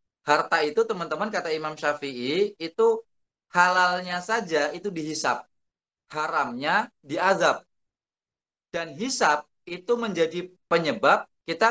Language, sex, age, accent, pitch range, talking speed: Indonesian, male, 30-49, native, 160-215 Hz, 95 wpm